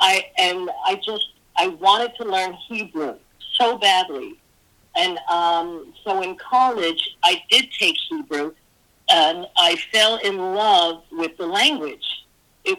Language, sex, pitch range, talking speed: English, female, 155-225 Hz, 135 wpm